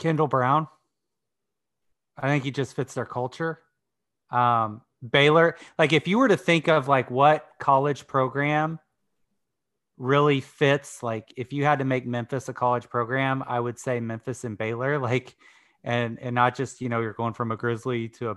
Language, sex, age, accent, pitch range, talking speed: English, male, 30-49, American, 120-140 Hz, 175 wpm